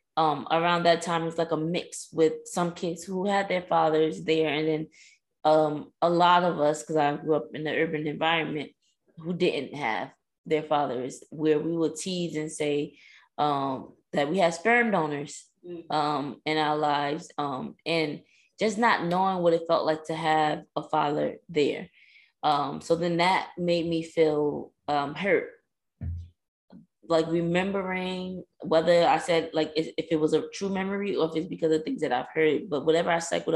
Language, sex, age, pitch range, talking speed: English, female, 20-39, 155-175 Hz, 180 wpm